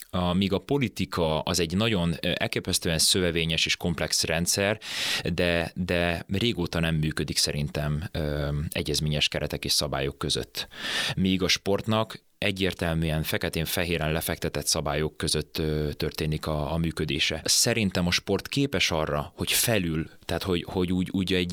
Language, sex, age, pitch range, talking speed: Hungarian, male, 30-49, 80-95 Hz, 130 wpm